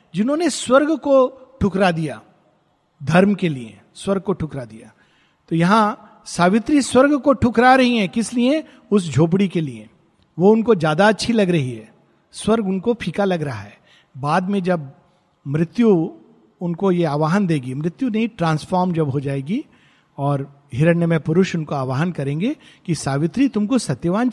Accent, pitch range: native, 165-230 Hz